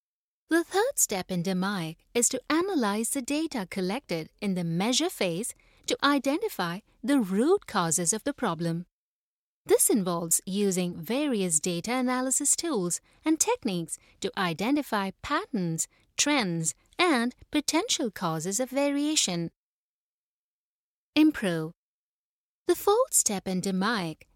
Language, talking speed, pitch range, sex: English, 115 wpm, 180-300 Hz, female